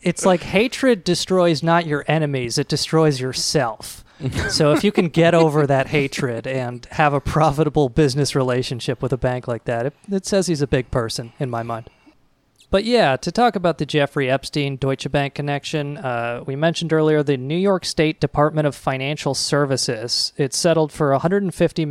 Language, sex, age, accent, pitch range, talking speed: English, male, 30-49, American, 135-160 Hz, 180 wpm